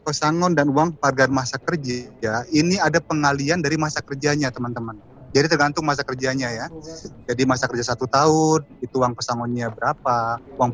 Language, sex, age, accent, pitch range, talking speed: Indonesian, male, 30-49, native, 125-160 Hz, 155 wpm